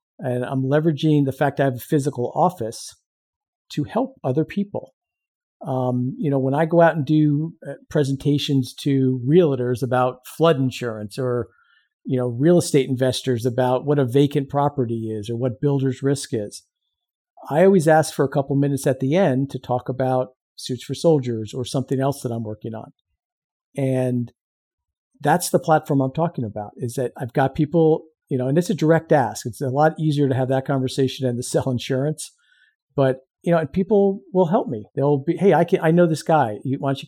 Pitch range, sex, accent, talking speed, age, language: 125-155 Hz, male, American, 195 wpm, 50-69, English